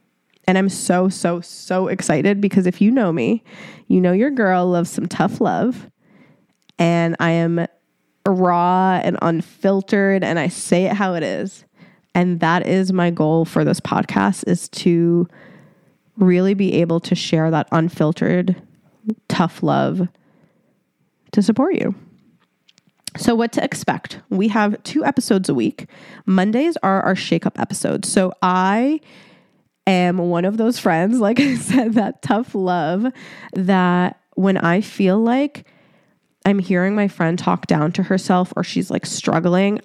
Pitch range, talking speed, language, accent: 175-210 Hz, 150 wpm, English, American